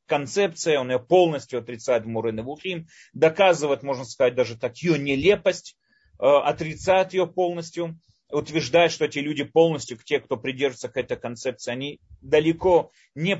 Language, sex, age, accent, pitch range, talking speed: Russian, male, 30-49, native, 125-175 Hz, 135 wpm